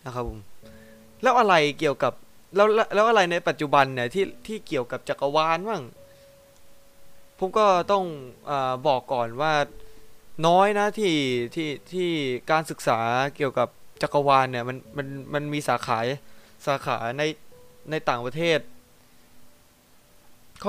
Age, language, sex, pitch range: 20-39, Thai, male, 125-170 Hz